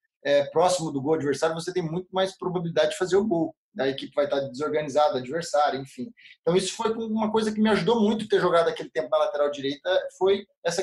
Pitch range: 155-200 Hz